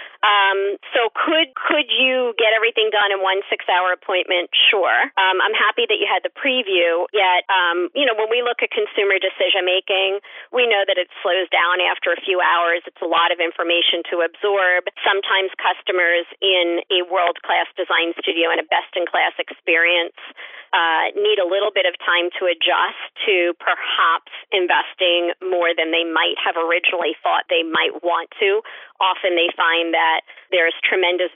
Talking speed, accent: 170 wpm, American